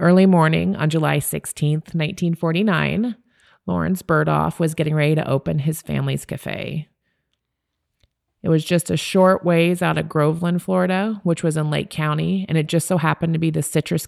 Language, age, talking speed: English, 30-49, 170 wpm